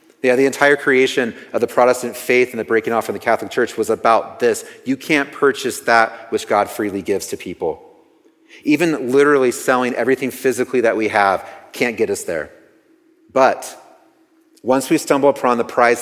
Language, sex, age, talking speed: English, male, 40-59, 180 wpm